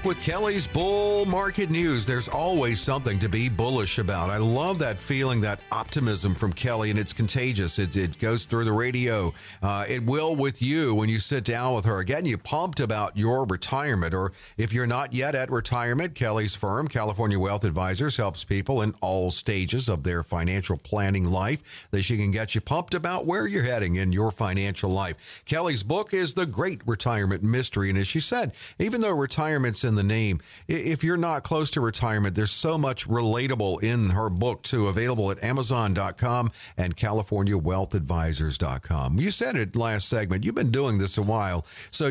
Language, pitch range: English, 100-135 Hz